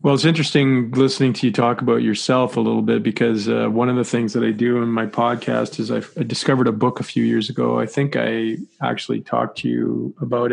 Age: 40-59